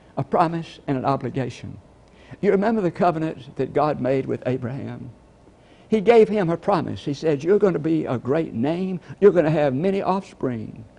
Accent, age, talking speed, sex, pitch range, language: American, 60-79, 185 wpm, male, 130-175 Hz, English